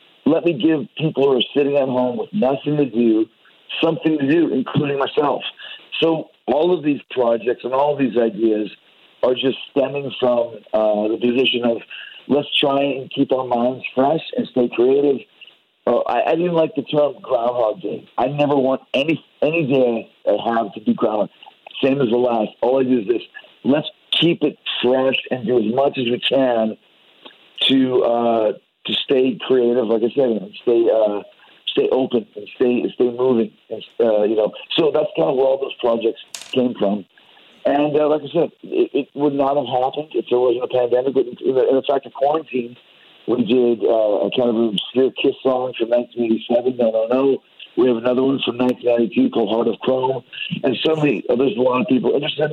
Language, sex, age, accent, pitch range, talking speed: English, male, 50-69, American, 120-145 Hz, 200 wpm